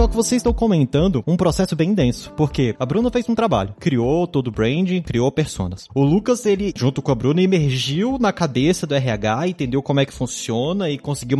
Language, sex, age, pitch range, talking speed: Portuguese, male, 20-39, 135-195 Hz, 205 wpm